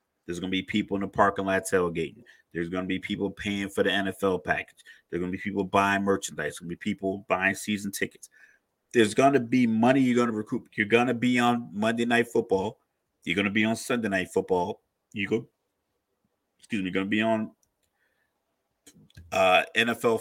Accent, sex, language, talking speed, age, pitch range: American, male, English, 205 wpm, 30-49, 95-115 Hz